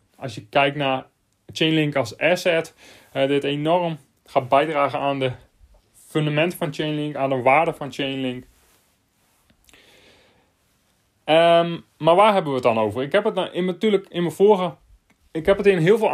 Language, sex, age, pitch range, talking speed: Dutch, male, 30-49, 130-160 Hz, 165 wpm